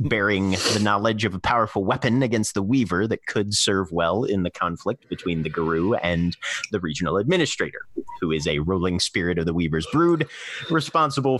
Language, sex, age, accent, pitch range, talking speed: English, male, 30-49, American, 95-130 Hz, 180 wpm